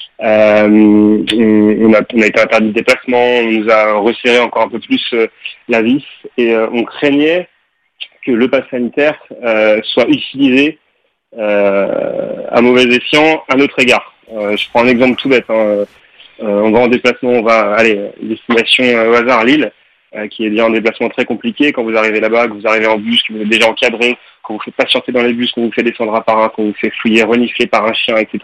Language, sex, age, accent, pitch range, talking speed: French, male, 30-49, French, 110-130 Hz, 210 wpm